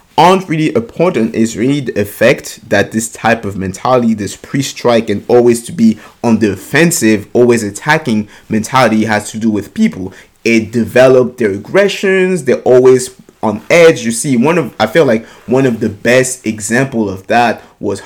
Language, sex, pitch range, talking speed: English, male, 105-130 Hz, 175 wpm